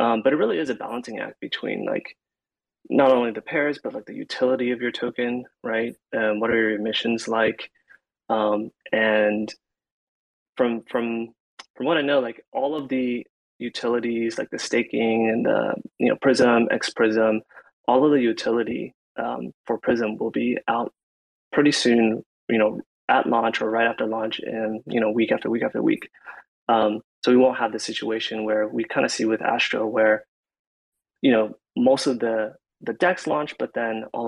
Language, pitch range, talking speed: English, 110-120 Hz, 185 wpm